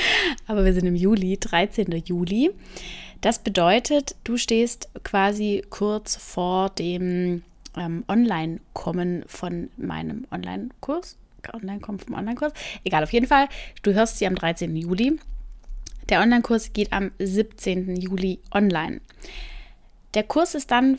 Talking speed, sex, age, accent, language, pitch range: 125 wpm, female, 20-39, German, German, 180-230 Hz